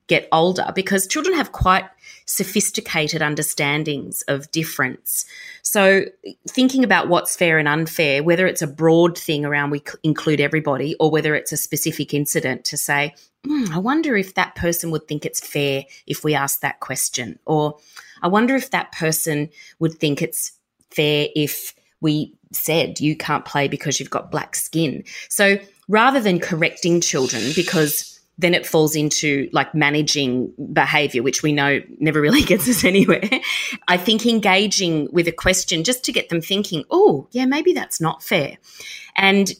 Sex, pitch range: female, 150-200 Hz